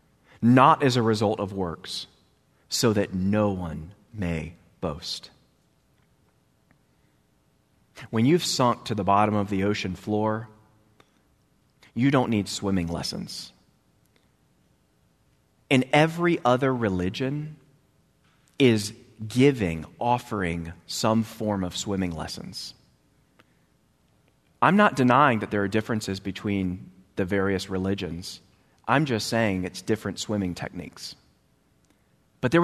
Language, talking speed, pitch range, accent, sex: English, 110 wpm, 95-120 Hz, American, male